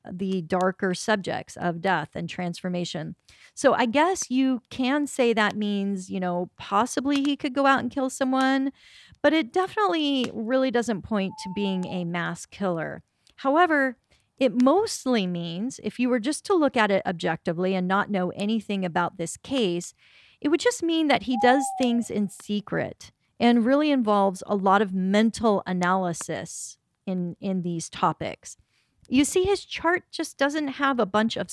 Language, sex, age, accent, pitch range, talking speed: English, female, 40-59, American, 185-265 Hz, 170 wpm